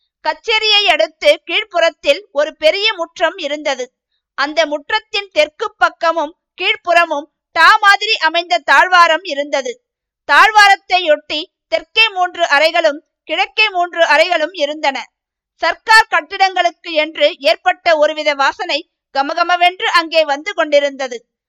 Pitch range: 295-360 Hz